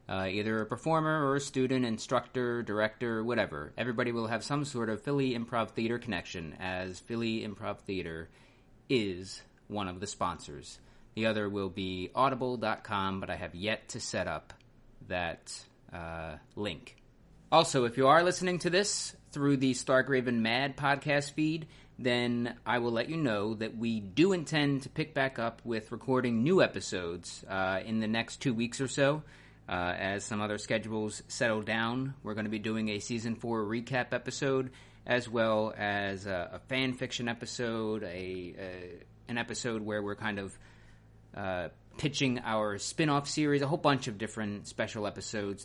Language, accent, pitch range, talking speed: English, American, 105-130 Hz, 170 wpm